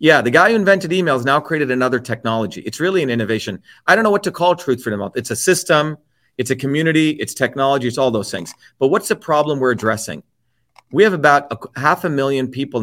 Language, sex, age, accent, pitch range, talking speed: English, male, 40-59, American, 125-170 Hz, 230 wpm